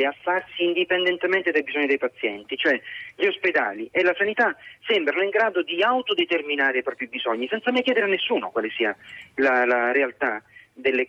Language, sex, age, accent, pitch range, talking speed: Italian, male, 30-49, native, 135-195 Hz, 175 wpm